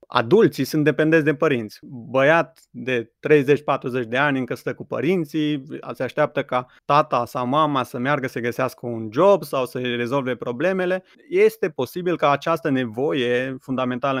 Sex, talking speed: male, 155 wpm